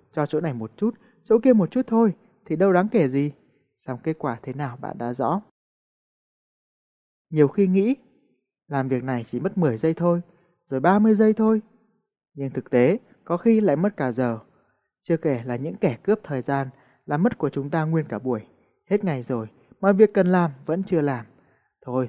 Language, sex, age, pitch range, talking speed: Vietnamese, male, 20-39, 135-205 Hz, 205 wpm